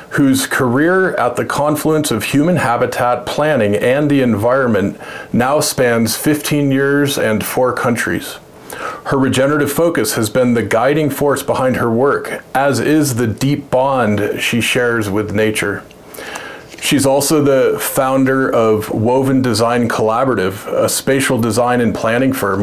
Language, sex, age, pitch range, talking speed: English, male, 40-59, 115-140 Hz, 140 wpm